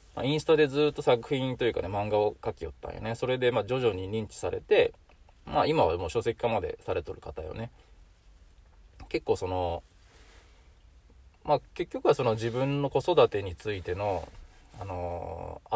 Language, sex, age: Japanese, male, 20-39